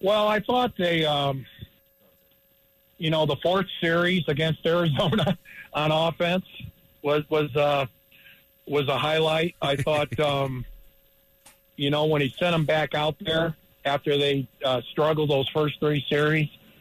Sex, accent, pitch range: male, American, 140-160 Hz